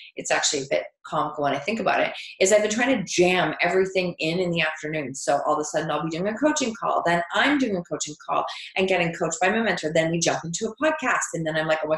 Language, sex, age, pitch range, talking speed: English, female, 30-49, 175-260 Hz, 280 wpm